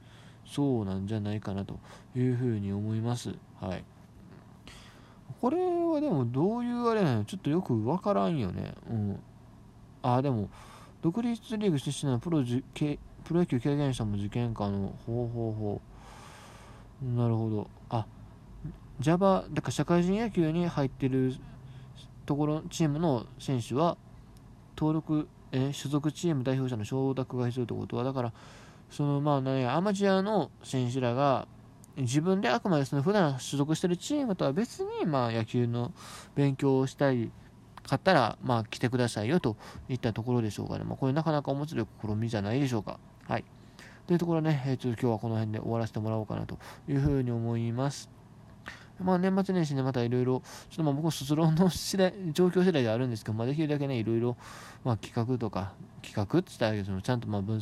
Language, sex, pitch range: Japanese, male, 115-150 Hz